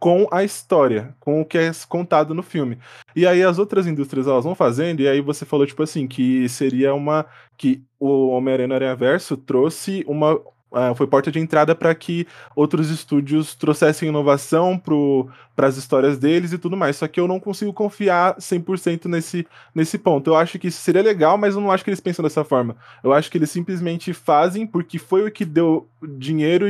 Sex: male